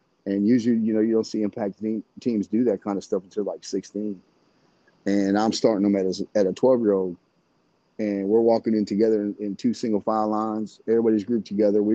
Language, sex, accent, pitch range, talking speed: English, male, American, 100-110 Hz, 200 wpm